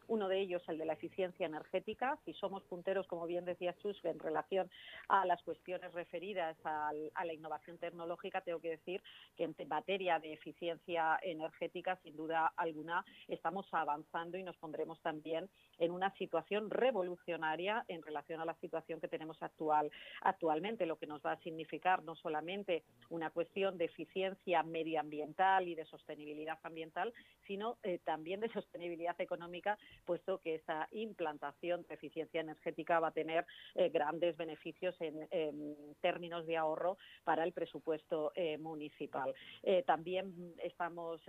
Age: 40-59